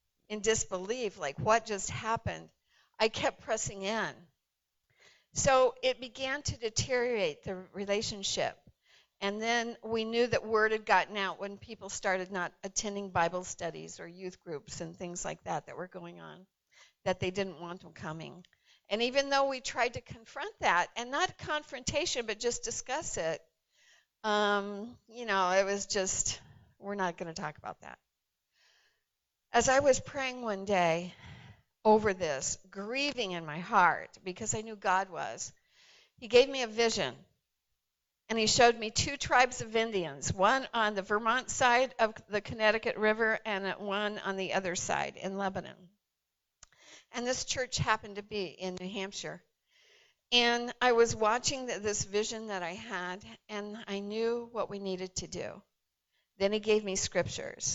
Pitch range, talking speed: 185-235 Hz, 160 wpm